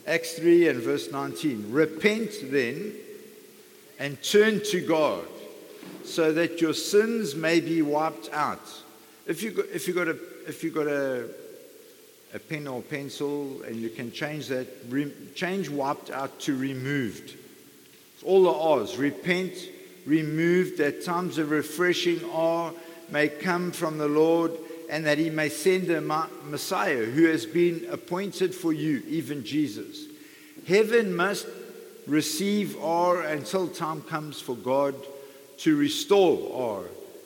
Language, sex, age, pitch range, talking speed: English, male, 50-69, 150-225 Hz, 140 wpm